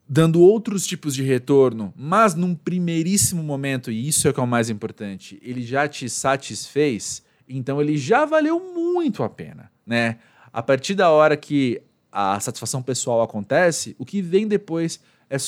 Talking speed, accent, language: 170 wpm, Brazilian, Portuguese